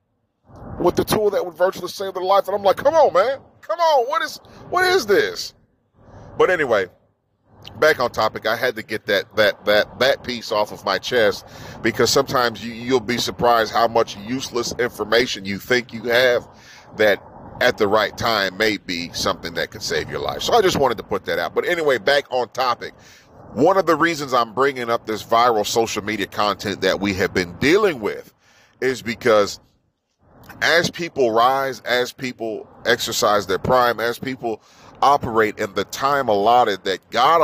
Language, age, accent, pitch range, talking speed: English, 40-59, American, 110-160 Hz, 185 wpm